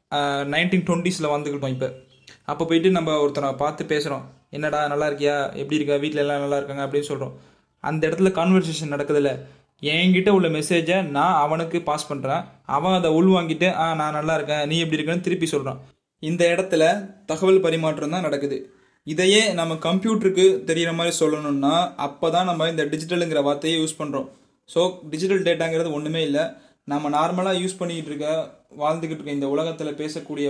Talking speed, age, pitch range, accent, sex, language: 160 wpm, 20-39, 145-165 Hz, native, male, Tamil